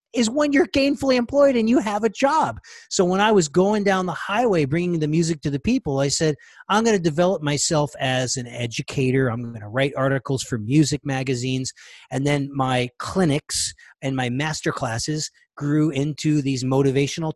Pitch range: 140-195 Hz